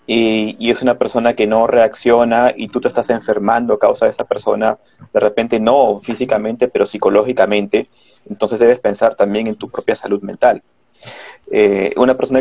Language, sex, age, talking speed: Spanish, male, 30-49, 175 wpm